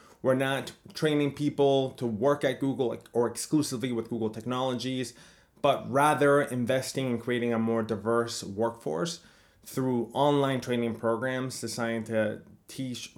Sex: male